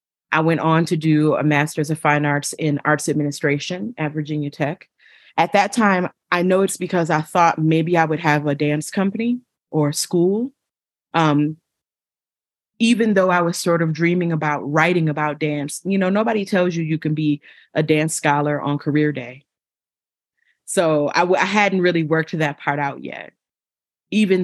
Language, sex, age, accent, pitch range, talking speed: English, female, 30-49, American, 145-175 Hz, 180 wpm